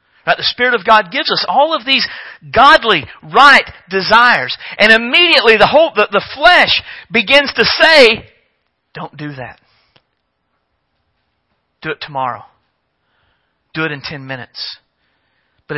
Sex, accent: male, American